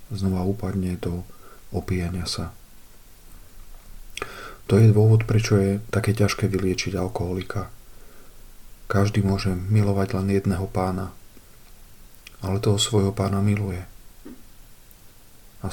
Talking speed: 100 wpm